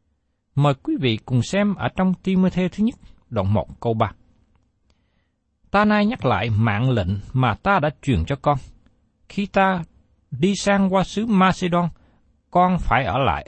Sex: male